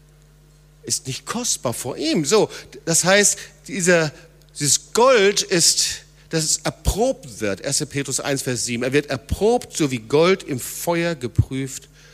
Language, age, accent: German, 50-69, German